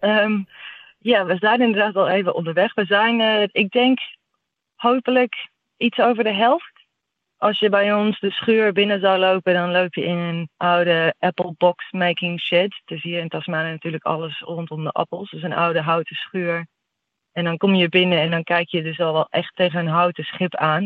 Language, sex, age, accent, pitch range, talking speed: Dutch, female, 20-39, Dutch, 160-185 Hz, 195 wpm